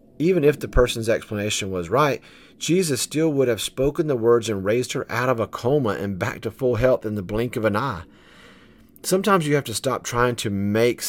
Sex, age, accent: male, 40-59, American